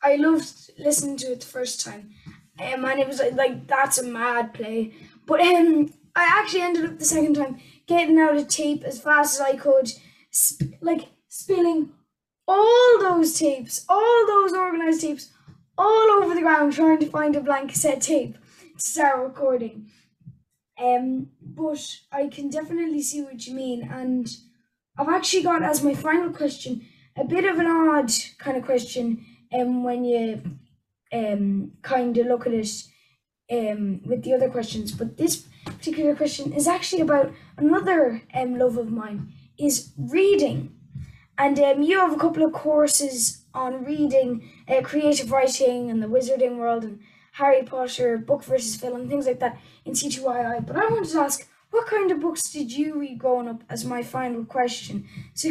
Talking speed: 170 wpm